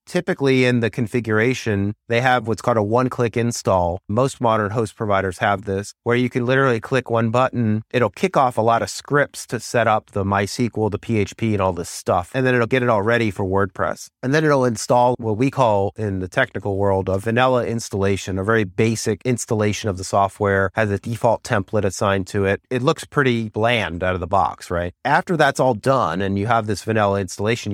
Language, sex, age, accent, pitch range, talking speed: English, male, 30-49, American, 100-125 Hz, 210 wpm